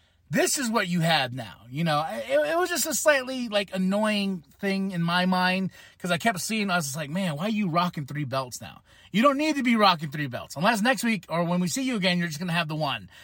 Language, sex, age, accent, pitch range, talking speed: English, male, 30-49, American, 145-235 Hz, 265 wpm